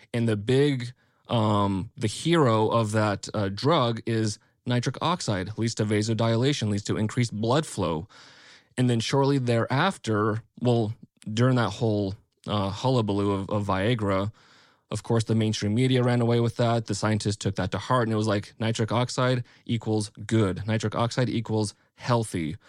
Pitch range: 105-125 Hz